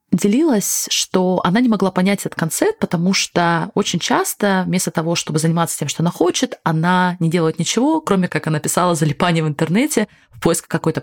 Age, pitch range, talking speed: 20-39, 155-215 Hz, 185 wpm